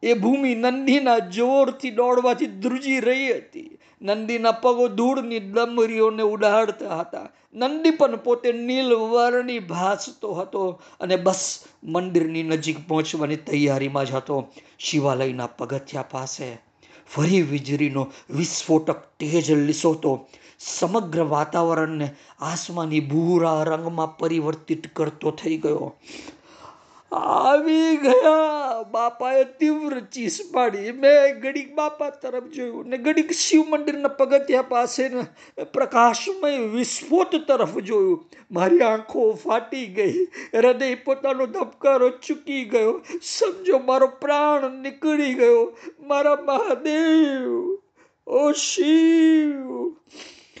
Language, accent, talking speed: Gujarati, native, 70 wpm